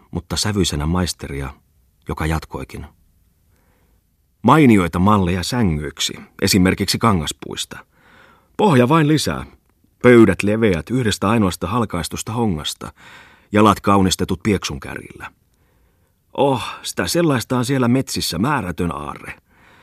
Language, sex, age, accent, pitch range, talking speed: Finnish, male, 30-49, native, 80-100 Hz, 90 wpm